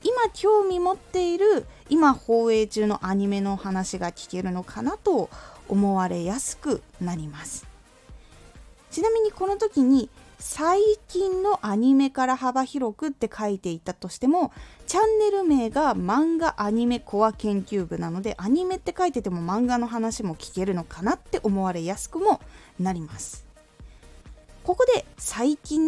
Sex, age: female, 20-39